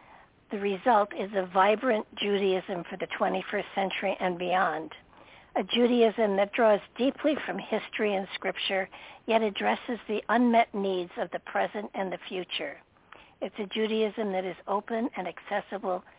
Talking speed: 150 wpm